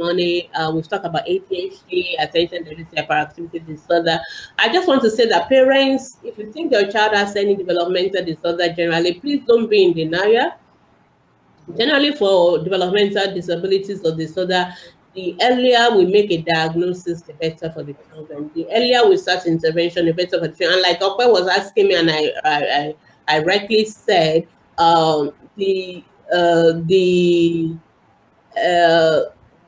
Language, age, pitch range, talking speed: English, 30-49, 170-225 Hz, 150 wpm